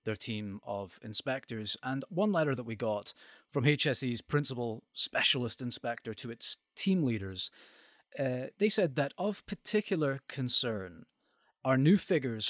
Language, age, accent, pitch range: English, 30-49, British, 110-145 Hz